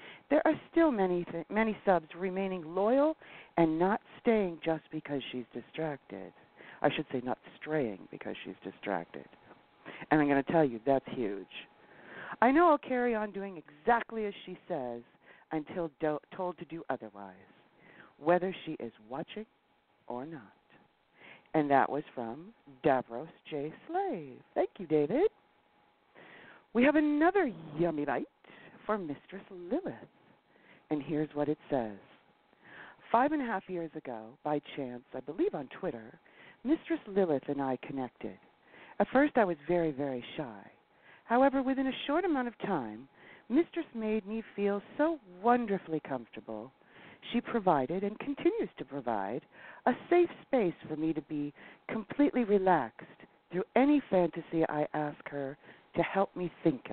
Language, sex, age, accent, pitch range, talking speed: English, female, 50-69, American, 150-230 Hz, 150 wpm